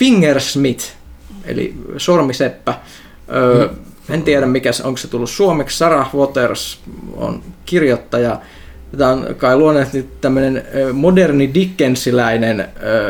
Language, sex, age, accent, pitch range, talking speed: Finnish, male, 20-39, native, 110-135 Hz, 90 wpm